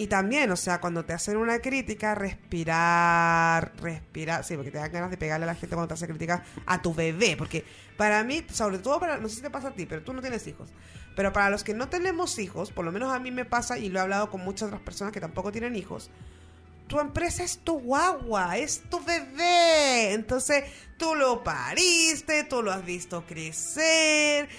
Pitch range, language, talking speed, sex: 170-265 Hz, Spanish, 215 wpm, female